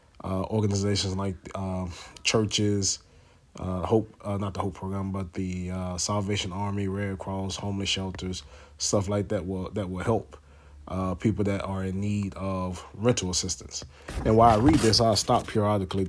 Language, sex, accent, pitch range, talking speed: English, male, American, 90-105 Hz, 170 wpm